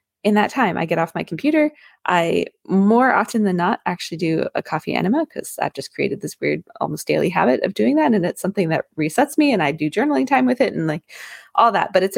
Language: English